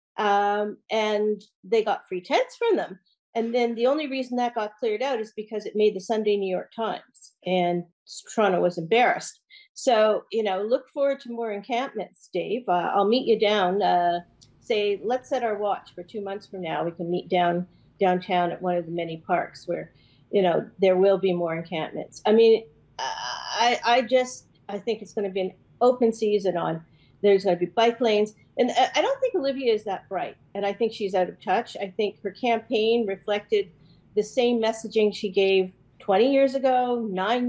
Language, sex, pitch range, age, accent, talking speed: English, female, 190-235 Hz, 40-59, American, 200 wpm